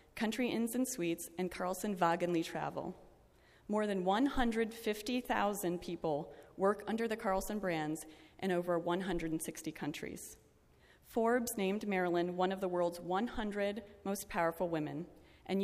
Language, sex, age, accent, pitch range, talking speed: English, female, 30-49, American, 175-210 Hz, 125 wpm